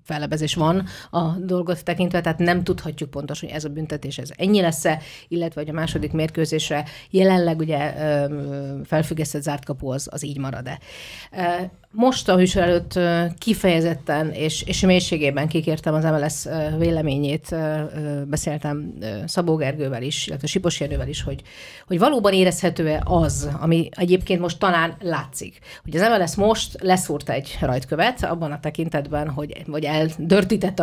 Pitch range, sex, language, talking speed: 145-175 Hz, female, Hungarian, 140 wpm